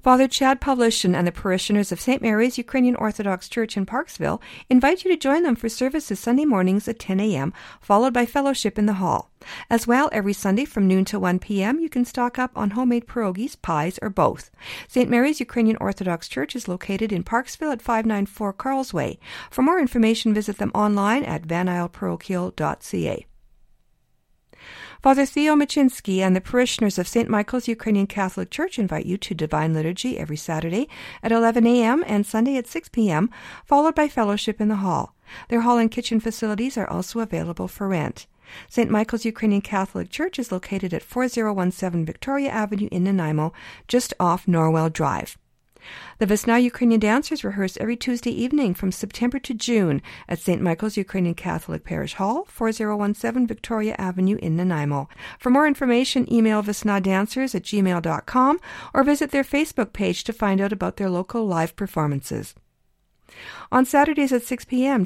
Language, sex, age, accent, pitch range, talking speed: English, female, 50-69, American, 190-250 Hz, 165 wpm